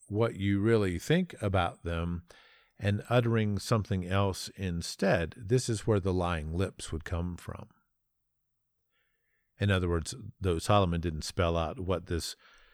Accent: American